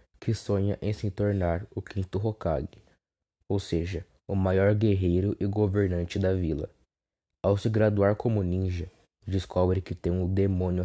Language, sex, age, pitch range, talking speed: Portuguese, male, 20-39, 90-105 Hz, 150 wpm